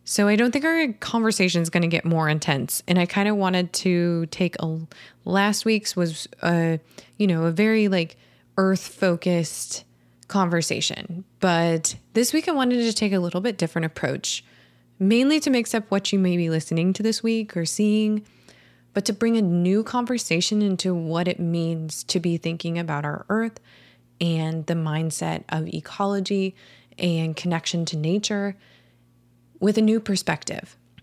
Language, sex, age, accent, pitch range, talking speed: English, female, 20-39, American, 160-200 Hz, 170 wpm